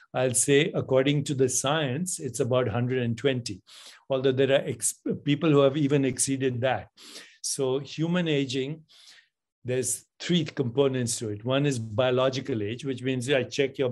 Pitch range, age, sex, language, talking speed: 125-140 Hz, 60-79, male, English, 155 wpm